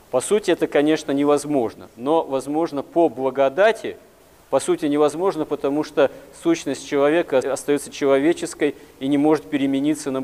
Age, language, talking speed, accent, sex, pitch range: 40-59, Russian, 135 wpm, native, male, 135-155 Hz